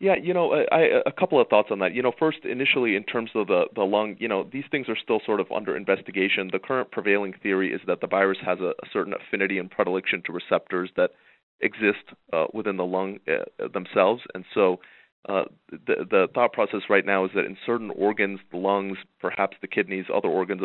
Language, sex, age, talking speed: English, male, 30-49, 225 wpm